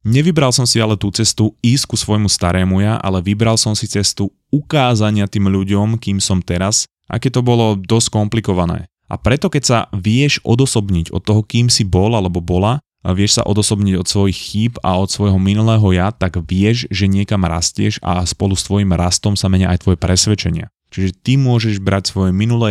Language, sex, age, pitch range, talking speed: Slovak, male, 20-39, 95-115 Hz, 195 wpm